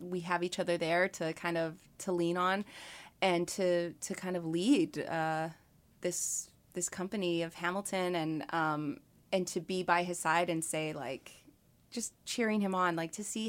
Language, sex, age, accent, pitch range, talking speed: English, female, 20-39, American, 170-200 Hz, 180 wpm